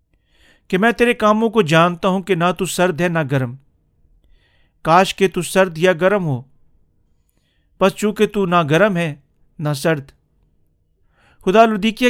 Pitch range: 150-195 Hz